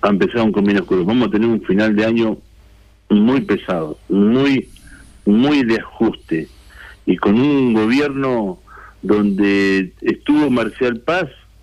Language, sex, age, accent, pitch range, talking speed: Spanish, male, 50-69, Argentinian, 100-130 Hz, 125 wpm